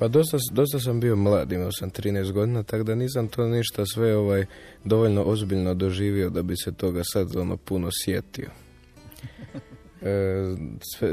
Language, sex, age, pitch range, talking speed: Croatian, male, 20-39, 90-105 Hz, 155 wpm